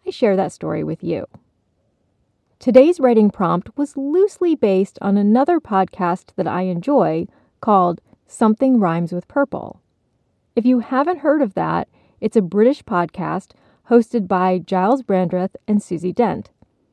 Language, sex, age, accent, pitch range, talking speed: English, female, 30-49, American, 185-260 Hz, 140 wpm